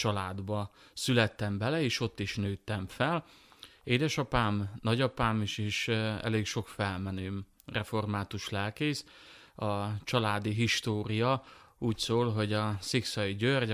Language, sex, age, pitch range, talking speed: Hungarian, male, 30-49, 100-115 Hz, 115 wpm